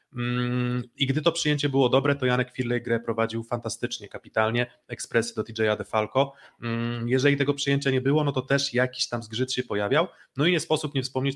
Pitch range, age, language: 110-130 Hz, 30-49, Polish